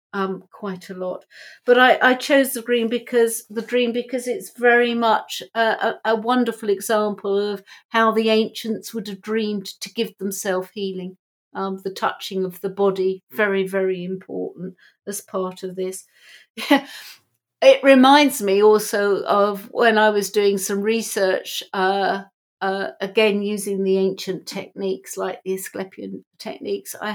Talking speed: 155 wpm